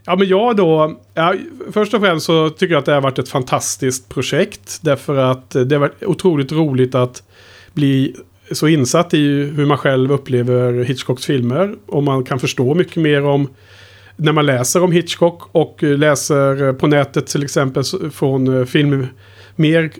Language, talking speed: Swedish, 170 wpm